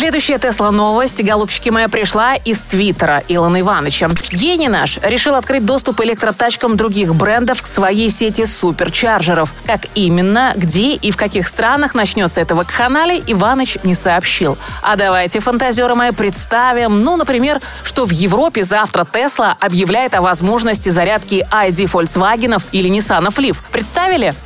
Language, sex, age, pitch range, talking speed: Russian, female, 20-39, 185-240 Hz, 135 wpm